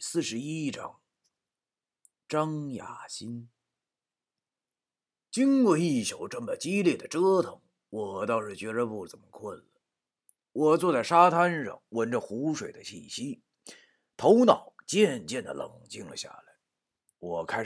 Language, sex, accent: Chinese, male, native